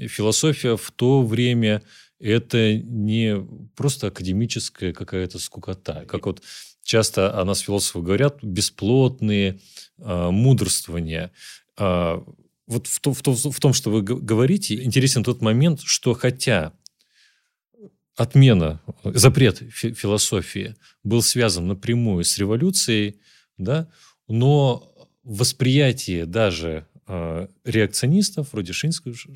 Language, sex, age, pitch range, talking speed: Russian, male, 30-49, 100-125 Hz, 90 wpm